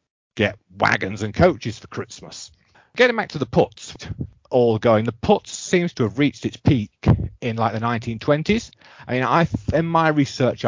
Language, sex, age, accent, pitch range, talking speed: English, male, 40-59, British, 110-155 Hz, 175 wpm